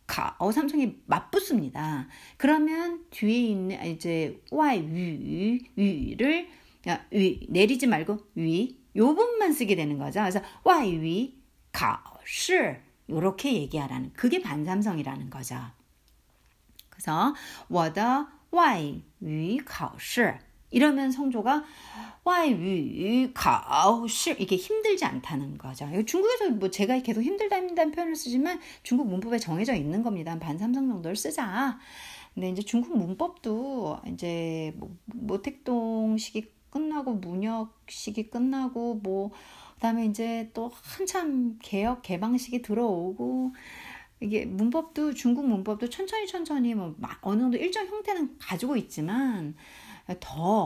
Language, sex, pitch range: Korean, female, 180-270 Hz